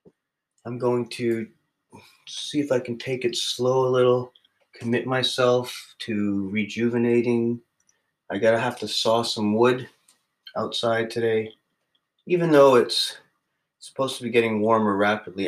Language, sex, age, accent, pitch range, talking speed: English, male, 30-49, American, 105-135 Hz, 130 wpm